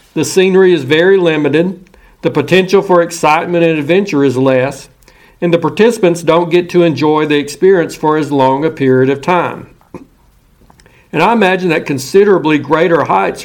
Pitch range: 145-175 Hz